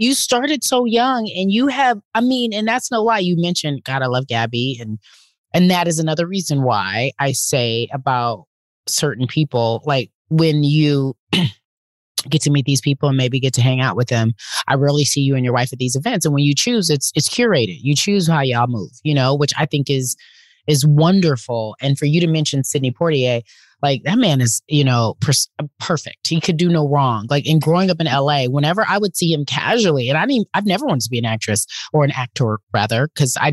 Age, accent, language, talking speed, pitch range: 30-49, American, English, 220 wpm, 130-165 Hz